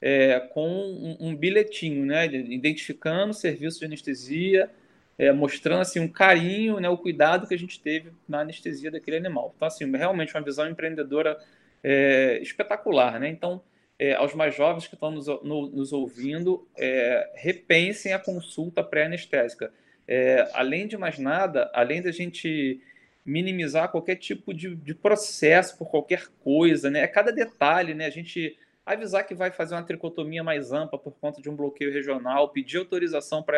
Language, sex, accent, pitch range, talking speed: Portuguese, male, Brazilian, 150-180 Hz, 165 wpm